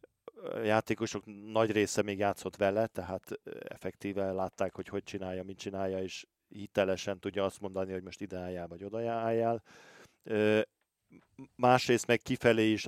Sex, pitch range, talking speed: male, 100-110 Hz, 140 wpm